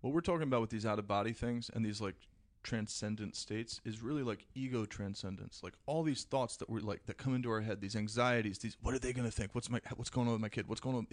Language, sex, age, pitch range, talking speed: English, male, 30-49, 100-115 Hz, 280 wpm